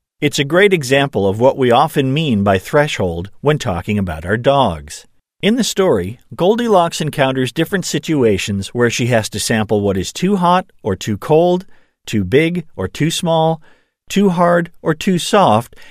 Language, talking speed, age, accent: English, 170 wpm, 40-59, American